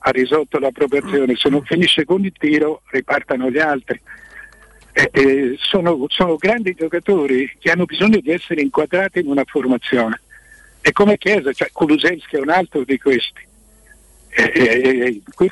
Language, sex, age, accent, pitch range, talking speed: Italian, male, 60-79, native, 135-190 Hz, 160 wpm